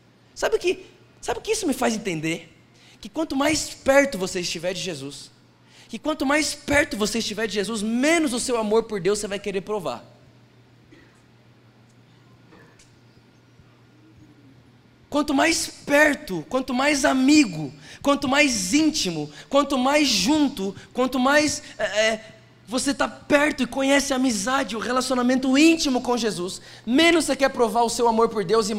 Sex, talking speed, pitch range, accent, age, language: male, 150 wpm, 200-275 Hz, Brazilian, 20-39, Portuguese